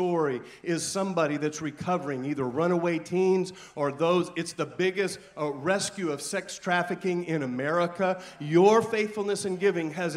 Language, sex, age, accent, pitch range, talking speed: English, male, 40-59, American, 165-200 Hz, 150 wpm